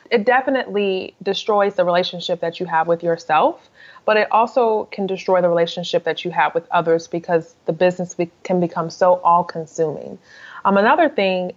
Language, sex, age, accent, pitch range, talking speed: English, female, 20-39, American, 175-225 Hz, 170 wpm